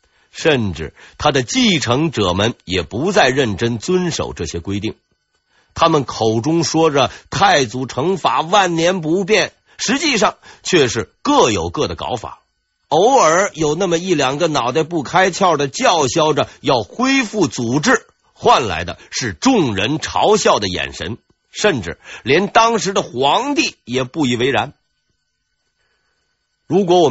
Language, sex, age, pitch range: Chinese, male, 50-69, 130-195 Hz